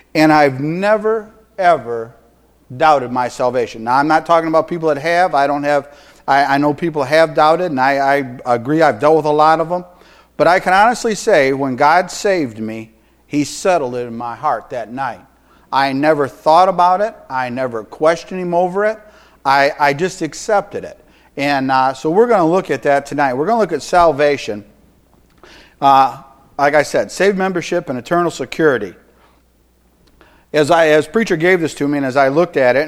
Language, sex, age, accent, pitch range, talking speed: English, male, 50-69, American, 130-160 Hz, 195 wpm